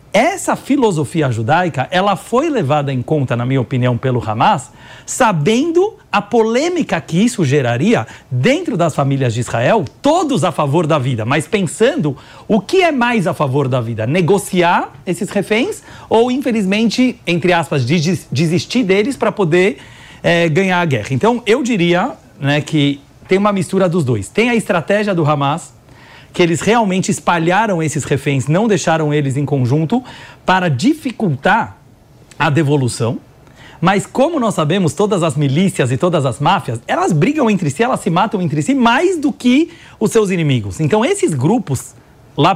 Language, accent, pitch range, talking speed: Portuguese, Brazilian, 145-215 Hz, 160 wpm